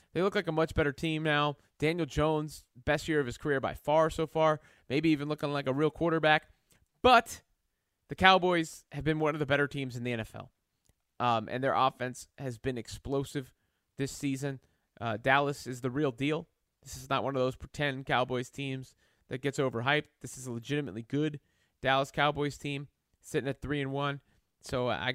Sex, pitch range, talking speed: male, 135-165 Hz, 195 wpm